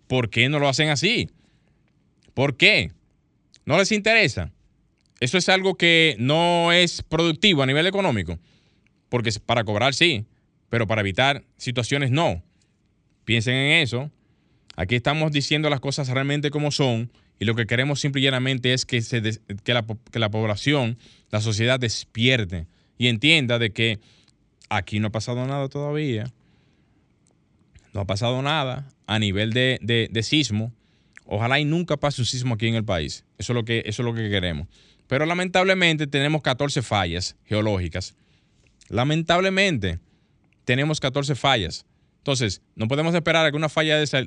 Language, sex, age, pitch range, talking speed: Spanish, male, 20-39, 105-145 Hz, 165 wpm